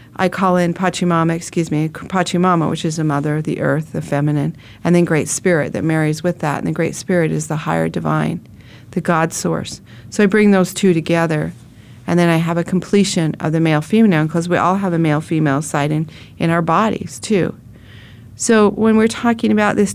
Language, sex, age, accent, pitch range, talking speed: English, female, 40-59, American, 145-195 Hz, 200 wpm